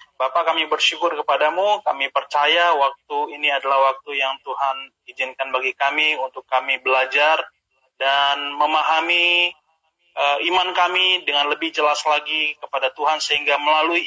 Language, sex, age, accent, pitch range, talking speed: Indonesian, male, 20-39, native, 130-155 Hz, 130 wpm